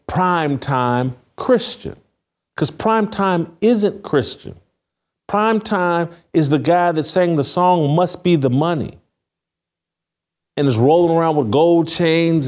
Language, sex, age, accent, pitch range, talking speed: English, male, 50-69, American, 135-180 Hz, 135 wpm